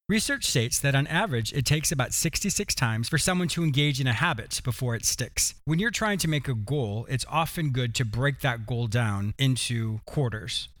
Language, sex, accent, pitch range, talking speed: English, male, American, 120-160 Hz, 205 wpm